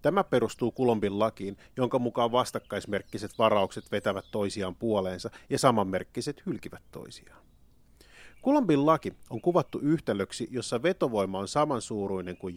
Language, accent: Finnish, native